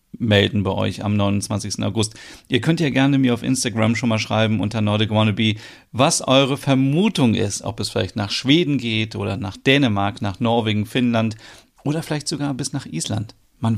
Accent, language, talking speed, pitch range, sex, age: German, German, 180 wpm, 110-130 Hz, male, 40-59